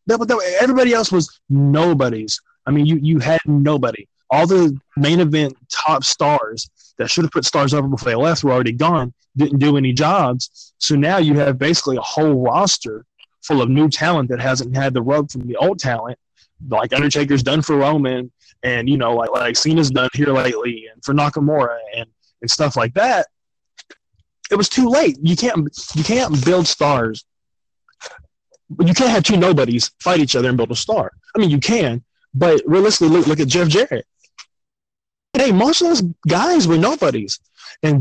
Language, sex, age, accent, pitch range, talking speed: English, male, 20-39, American, 125-170 Hz, 185 wpm